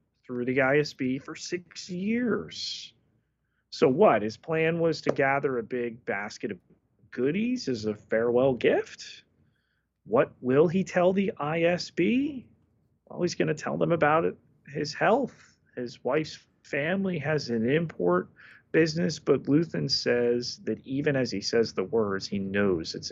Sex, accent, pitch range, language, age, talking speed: male, American, 115-175 Hz, English, 30-49, 150 wpm